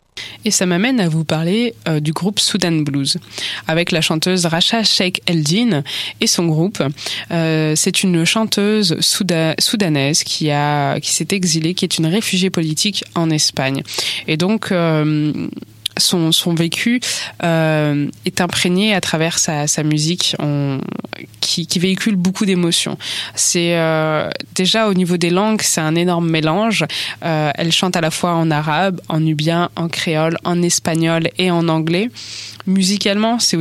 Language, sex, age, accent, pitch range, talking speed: French, female, 20-39, French, 155-180 Hz, 155 wpm